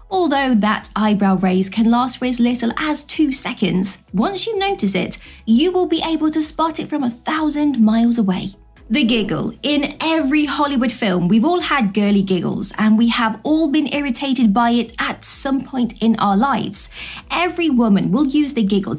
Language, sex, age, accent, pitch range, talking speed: English, female, 20-39, British, 220-315 Hz, 185 wpm